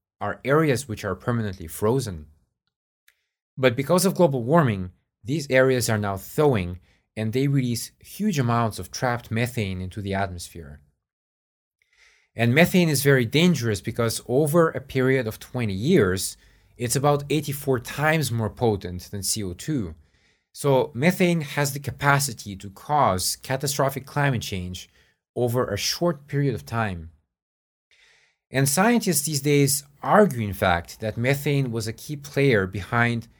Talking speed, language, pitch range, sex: 140 wpm, English, 100-140 Hz, male